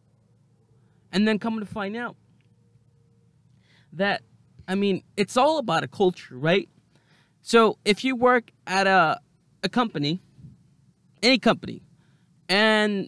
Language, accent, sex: English, American, male